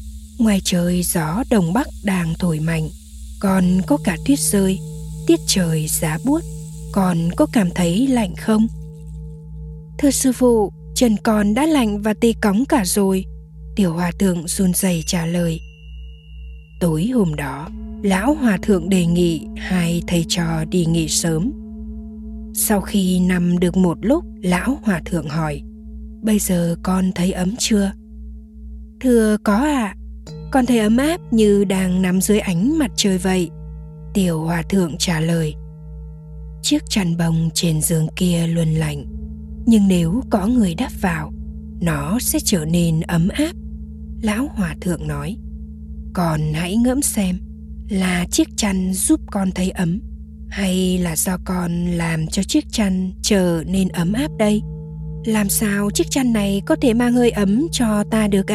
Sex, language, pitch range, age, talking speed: female, Vietnamese, 155-210 Hz, 20-39, 160 wpm